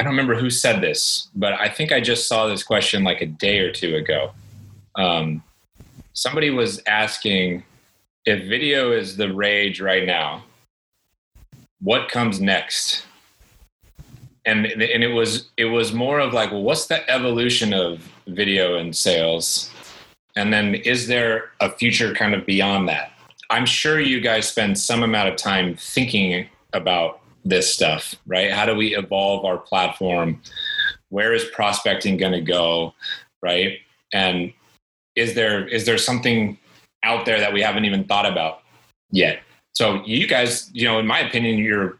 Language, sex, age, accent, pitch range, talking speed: English, male, 30-49, American, 95-120 Hz, 160 wpm